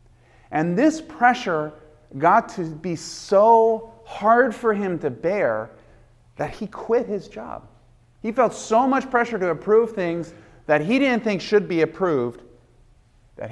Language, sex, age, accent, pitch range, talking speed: English, male, 30-49, American, 130-195 Hz, 145 wpm